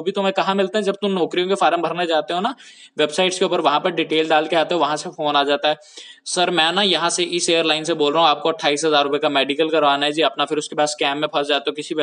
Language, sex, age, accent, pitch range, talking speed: Hindi, male, 20-39, native, 155-195 Hz, 65 wpm